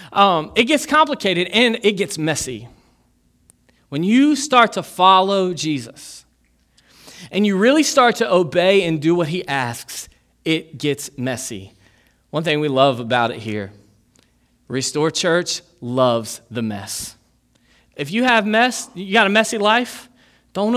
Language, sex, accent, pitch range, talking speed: English, male, American, 135-205 Hz, 145 wpm